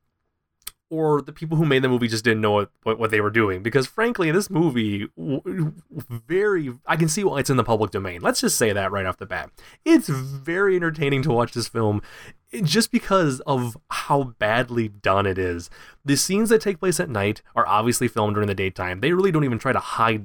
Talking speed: 215 wpm